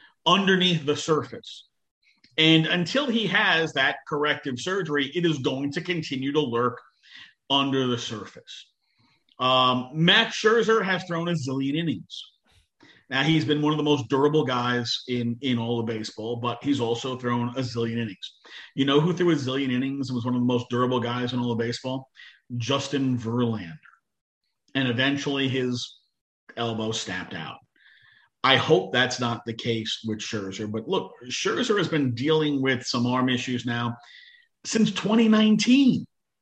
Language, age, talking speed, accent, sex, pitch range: English, 40-59, 160 wpm, American, male, 125-185 Hz